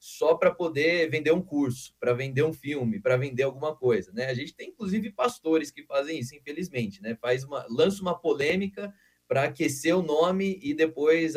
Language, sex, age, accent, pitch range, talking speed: Portuguese, male, 20-39, Brazilian, 125-160 Hz, 190 wpm